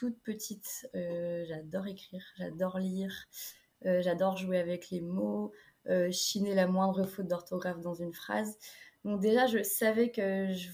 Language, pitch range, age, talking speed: French, 180-210 Hz, 20-39, 155 wpm